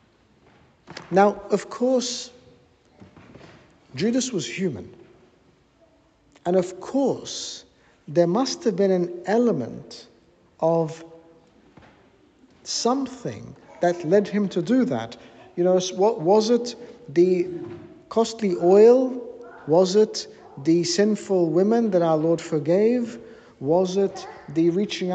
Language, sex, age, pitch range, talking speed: English, male, 60-79, 160-230 Hz, 105 wpm